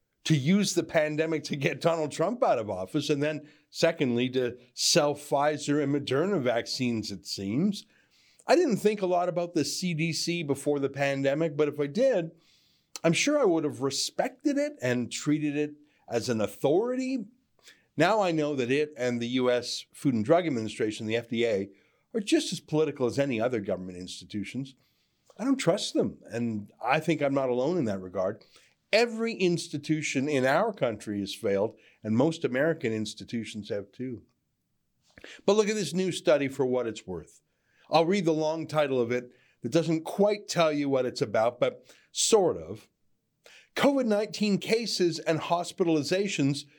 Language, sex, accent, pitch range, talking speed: English, male, American, 125-170 Hz, 170 wpm